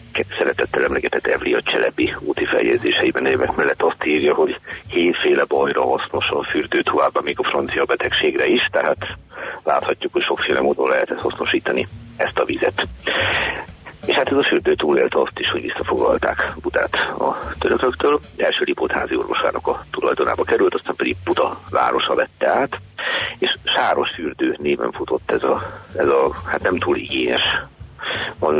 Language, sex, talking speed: Hungarian, male, 150 wpm